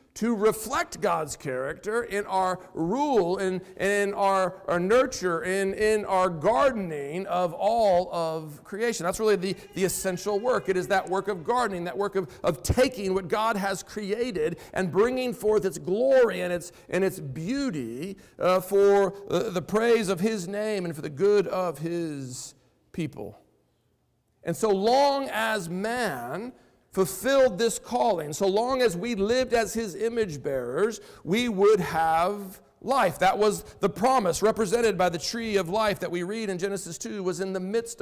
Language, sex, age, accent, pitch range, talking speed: English, male, 50-69, American, 180-225 Hz, 165 wpm